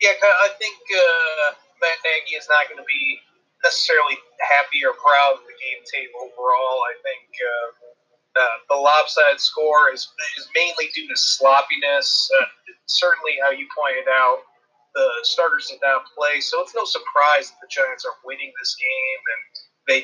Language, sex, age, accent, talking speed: English, male, 30-49, American, 170 wpm